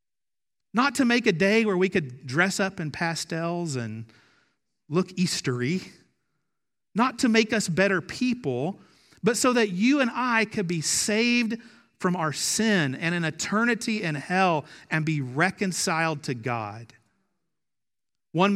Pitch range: 155-210 Hz